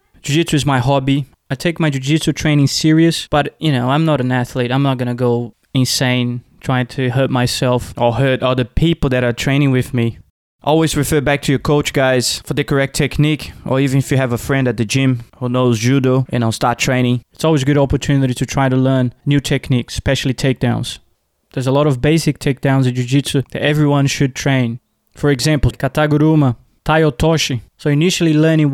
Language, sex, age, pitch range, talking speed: English, male, 20-39, 130-150 Hz, 210 wpm